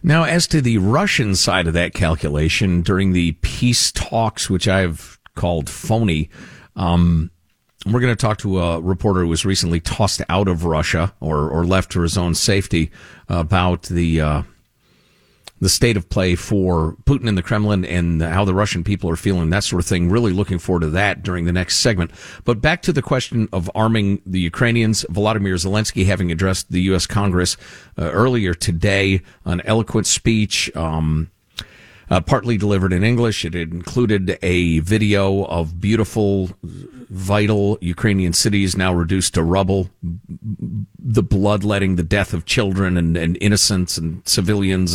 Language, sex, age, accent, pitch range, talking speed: English, male, 50-69, American, 85-105 Hz, 165 wpm